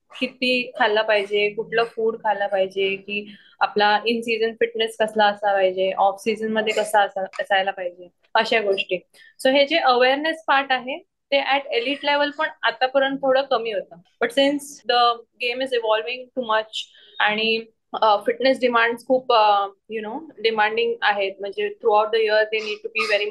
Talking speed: 170 wpm